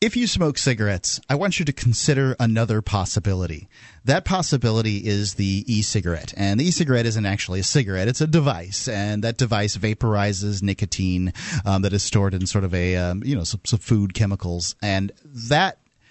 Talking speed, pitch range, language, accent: 180 wpm, 105-135 Hz, English, American